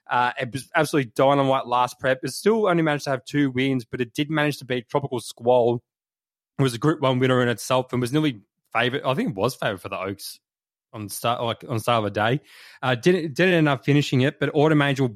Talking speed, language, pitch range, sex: 245 wpm, English, 120-140 Hz, male